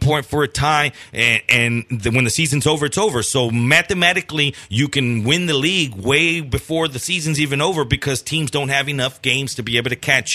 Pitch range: 130-180 Hz